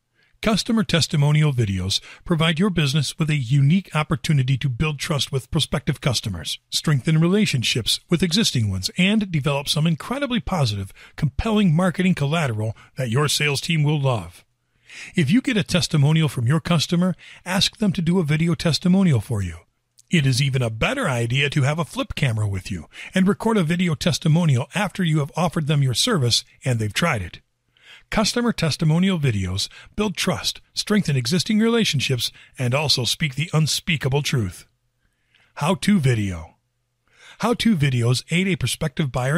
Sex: male